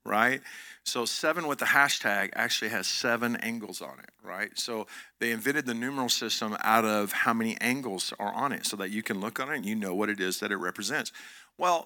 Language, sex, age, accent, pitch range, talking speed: English, male, 50-69, American, 105-135 Hz, 225 wpm